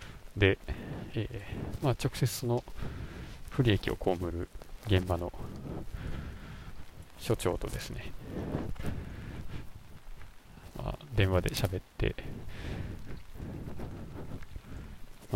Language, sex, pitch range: Japanese, male, 90-115 Hz